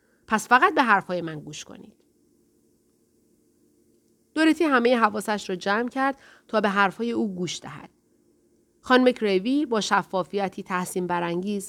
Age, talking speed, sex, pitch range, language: 30-49, 130 wpm, female, 180-245 Hz, Persian